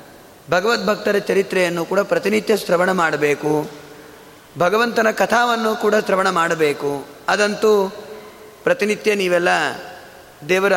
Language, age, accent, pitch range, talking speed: Kannada, 30-49, native, 145-210 Hz, 85 wpm